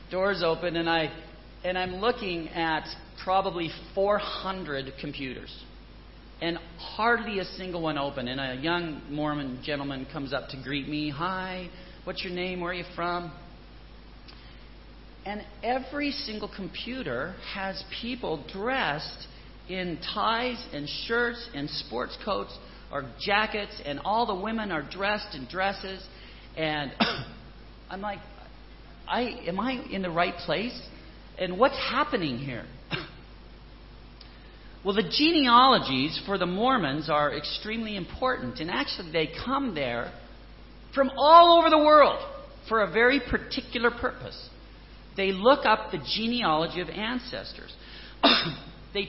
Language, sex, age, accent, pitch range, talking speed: English, male, 40-59, American, 160-225 Hz, 130 wpm